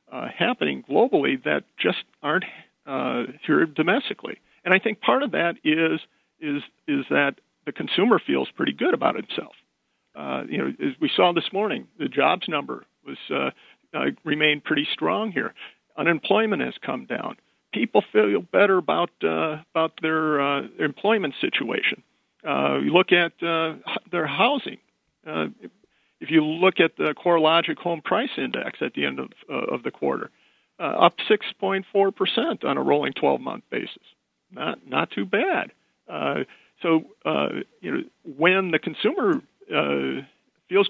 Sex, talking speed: male, 155 wpm